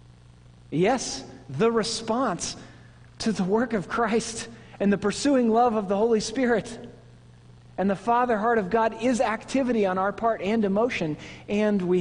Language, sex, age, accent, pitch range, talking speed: English, male, 40-59, American, 135-200 Hz, 155 wpm